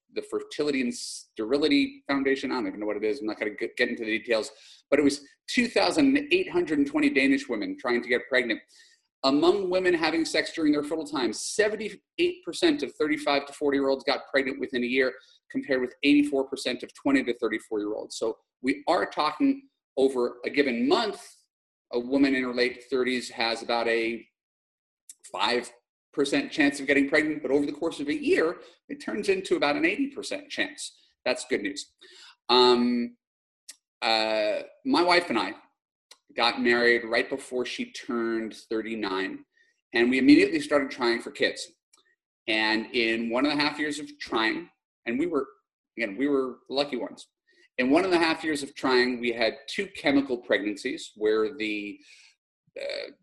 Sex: male